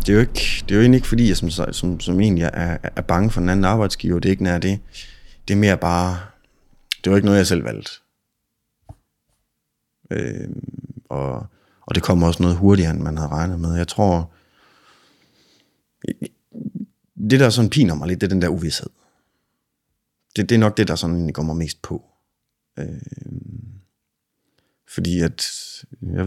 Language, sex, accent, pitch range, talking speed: Danish, male, native, 85-110 Hz, 185 wpm